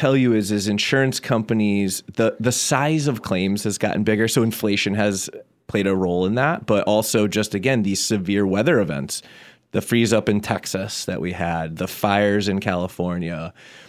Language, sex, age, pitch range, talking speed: English, male, 30-49, 95-110 Hz, 180 wpm